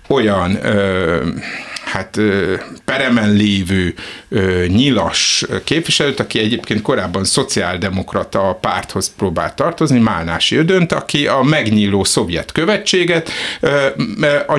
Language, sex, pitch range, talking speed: Hungarian, male, 100-145 Hz, 85 wpm